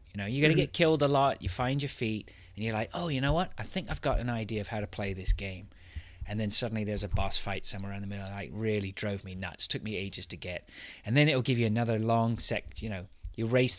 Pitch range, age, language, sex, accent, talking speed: 95-120 Hz, 30-49, English, male, British, 285 wpm